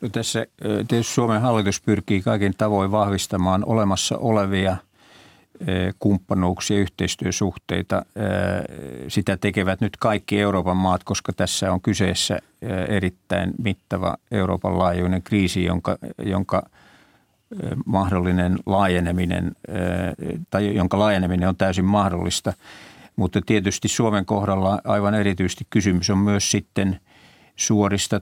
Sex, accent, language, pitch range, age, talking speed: male, native, Finnish, 90-105 Hz, 50-69, 105 wpm